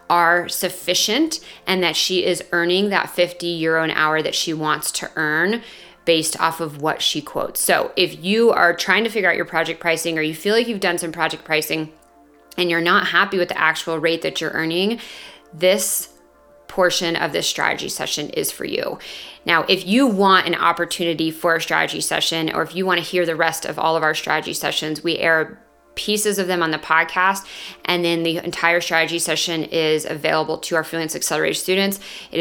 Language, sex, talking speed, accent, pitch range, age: English, female, 200 wpm, American, 160-185 Hz, 30-49